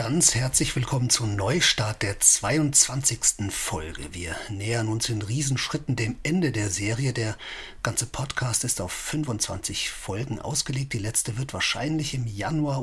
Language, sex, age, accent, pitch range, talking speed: German, male, 50-69, German, 105-135 Hz, 145 wpm